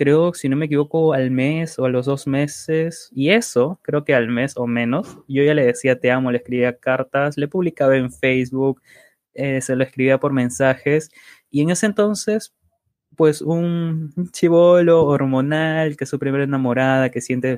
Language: Spanish